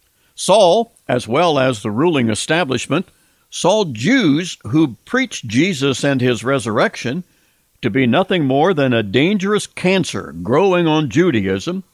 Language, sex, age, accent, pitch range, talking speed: English, male, 60-79, American, 125-195 Hz, 130 wpm